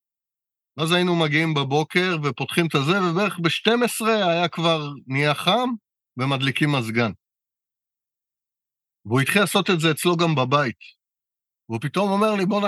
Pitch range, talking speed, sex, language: 130-170 Hz, 135 wpm, male, Hebrew